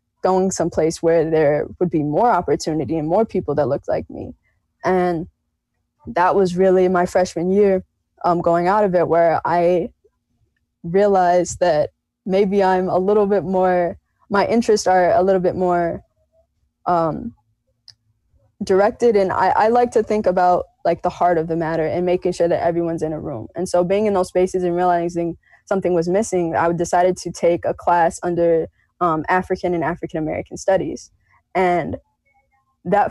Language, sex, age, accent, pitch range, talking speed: English, female, 20-39, American, 170-195 Hz, 170 wpm